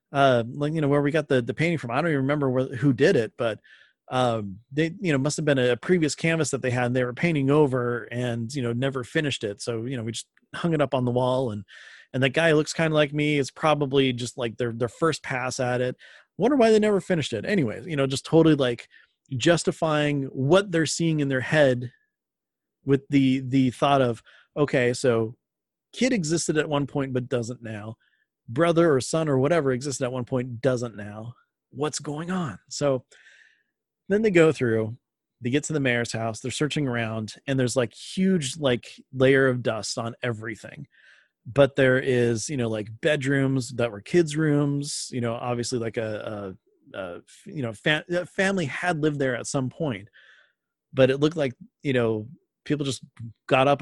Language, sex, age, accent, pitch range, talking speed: English, male, 30-49, American, 120-150 Hz, 200 wpm